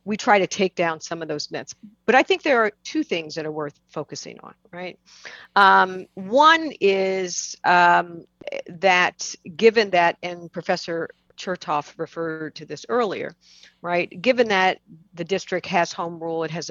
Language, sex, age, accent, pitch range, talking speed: English, female, 50-69, American, 160-190 Hz, 165 wpm